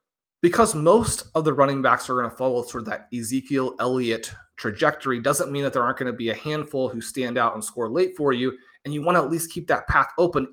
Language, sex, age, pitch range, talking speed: English, male, 30-49, 120-155 Hz, 250 wpm